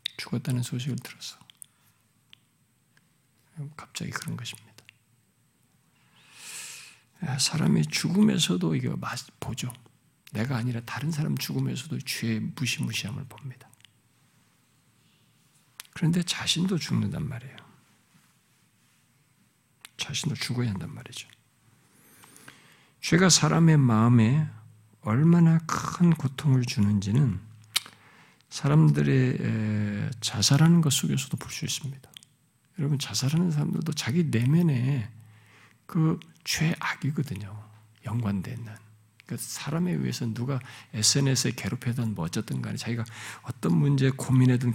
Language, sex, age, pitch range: Korean, male, 50-69, 115-155 Hz